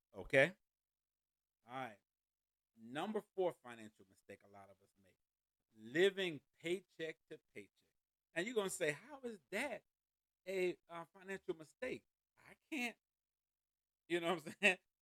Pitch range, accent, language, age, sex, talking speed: 125-190 Hz, American, English, 40-59, male, 135 wpm